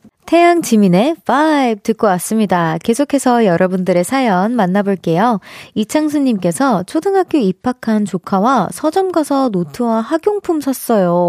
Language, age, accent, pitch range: Korean, 20-39, native, 195-310 Hz